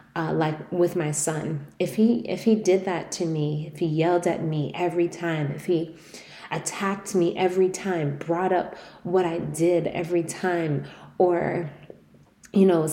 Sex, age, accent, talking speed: female, 20-39, American, 165 wpm